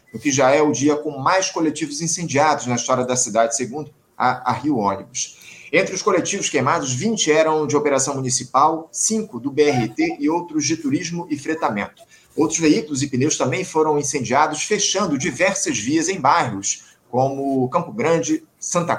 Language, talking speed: Portuguese, 160 wpm